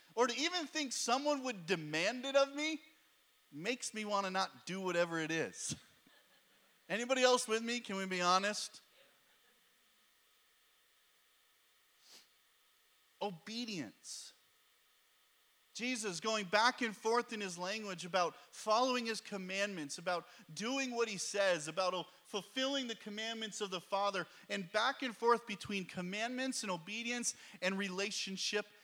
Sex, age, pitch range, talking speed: male, 40-59, 180-240 Hz, 130 wpm